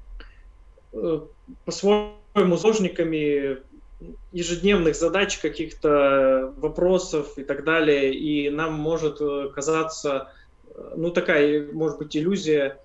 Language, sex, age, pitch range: Russian, male, 20-39, 135-160 Hz